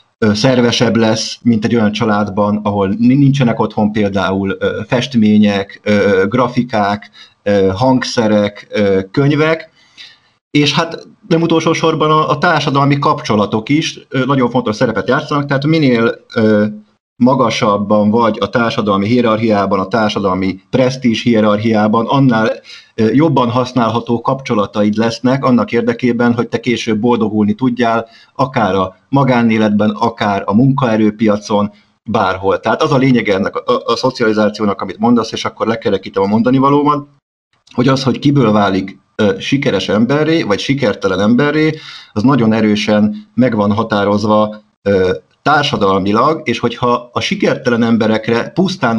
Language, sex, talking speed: Hungarian, male, 120 wpm